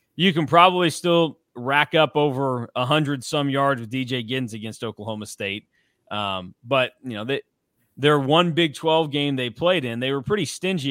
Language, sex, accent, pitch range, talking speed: English, male, American, 115-145 Hz, 180 wpm